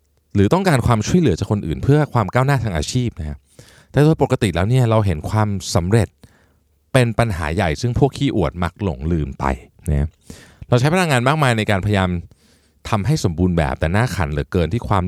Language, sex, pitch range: Thai, male, 80-115 Hz